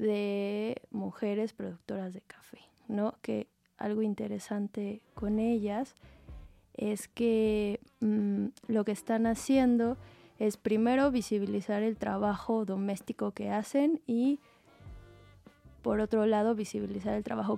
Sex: female